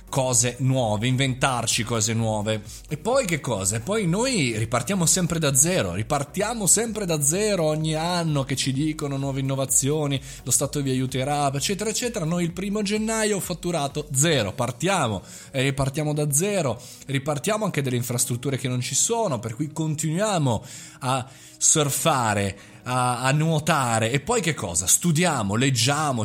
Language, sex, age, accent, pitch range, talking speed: Italian, male, 30-49, native, 125-160 Hz, 150 wpm